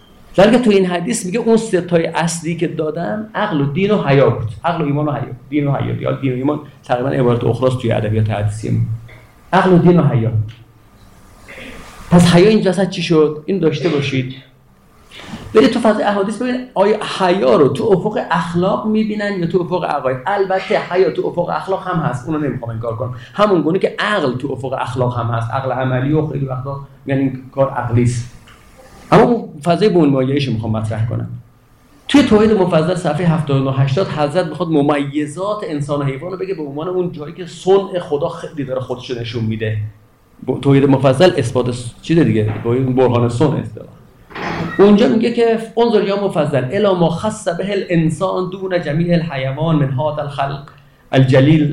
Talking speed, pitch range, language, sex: 180 wpm, 130-185 Hz, Persian, male